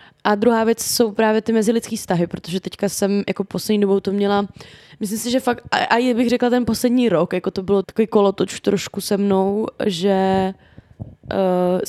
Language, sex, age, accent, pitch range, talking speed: Czech, female, 20-39, native, 195-225 Hz, 185 wpm